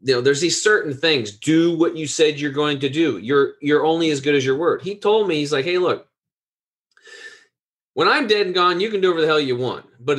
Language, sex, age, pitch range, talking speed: English, male, 30-49, 135-190 Hz, 255 wpm